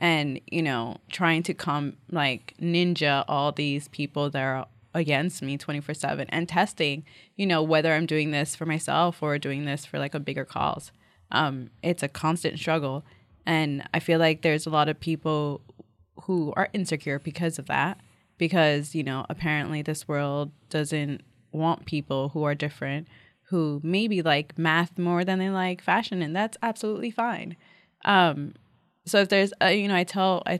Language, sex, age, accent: English, female, 20-39, American